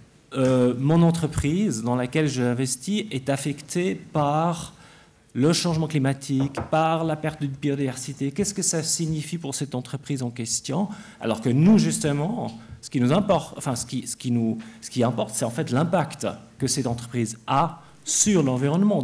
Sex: male